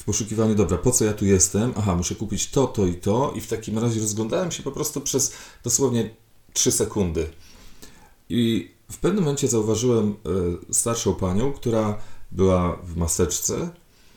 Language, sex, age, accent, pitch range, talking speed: Polish, male, 40-59, native, 95-120 Hz, 160 wpm